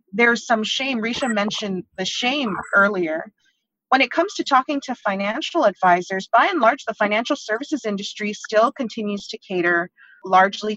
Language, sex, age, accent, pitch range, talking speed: English, female, 30-49, American, 200-290 Hz, 155 wpm